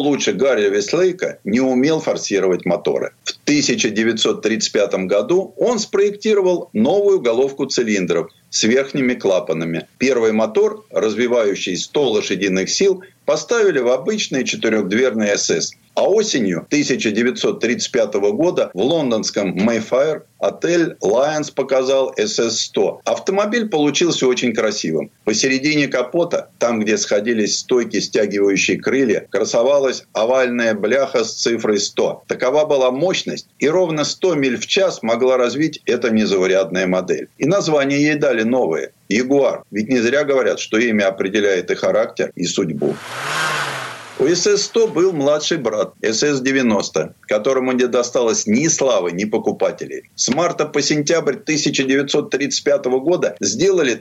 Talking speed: 120 wpm